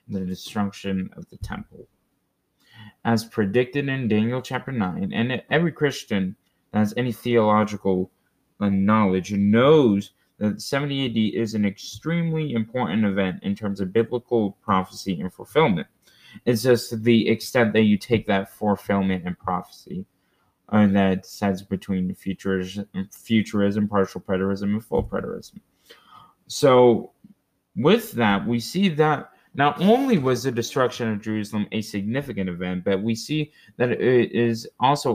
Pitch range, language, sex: 100-130 Hz, English, male